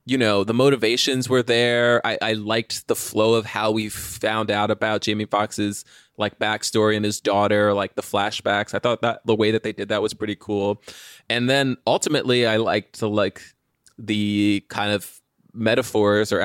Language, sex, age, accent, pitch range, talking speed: English, male, 20-39, American, 105-120 Hz, 185 wpm